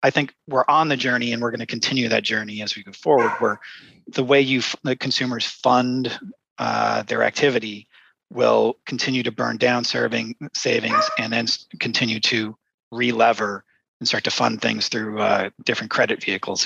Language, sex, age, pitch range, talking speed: English, male, 30-49, 100-125 Hz, 175 wpm